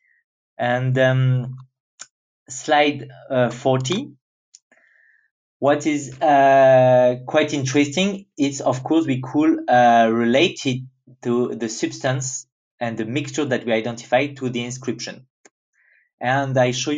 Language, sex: English, male